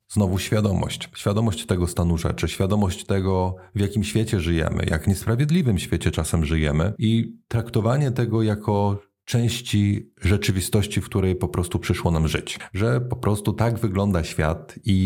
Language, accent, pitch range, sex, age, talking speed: English, Polish, 95-110 Hz, male, 30-49, 145 wpm